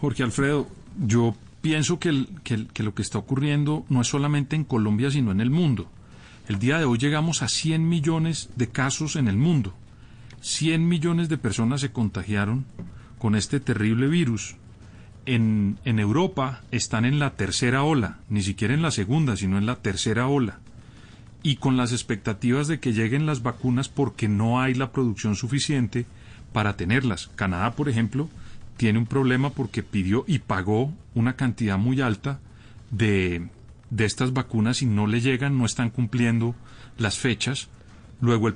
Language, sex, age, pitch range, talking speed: Spanish, male, 40-59, 110-140 Hz, 165 wpm